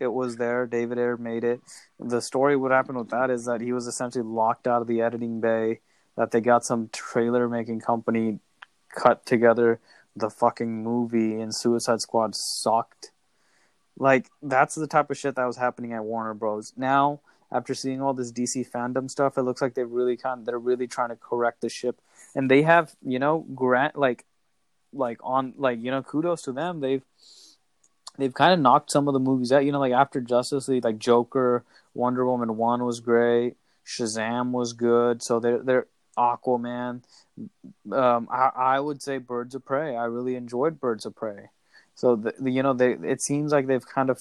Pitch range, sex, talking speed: 115-130 Hz, male, 195 wpm